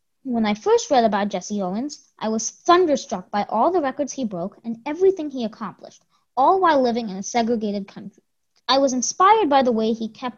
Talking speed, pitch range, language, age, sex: 200 wpm, 210-290 Hz, English, 20-39, female